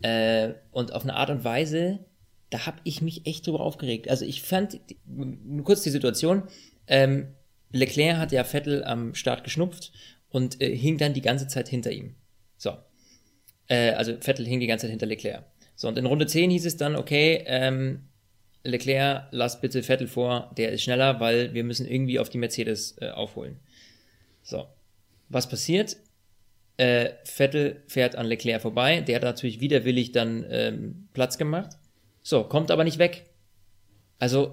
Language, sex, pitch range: German, male, 120-165 Hz